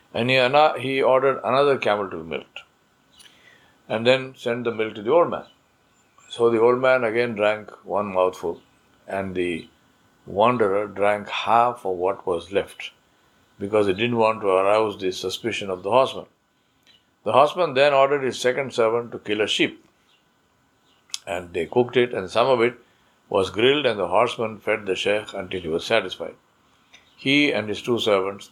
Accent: Indian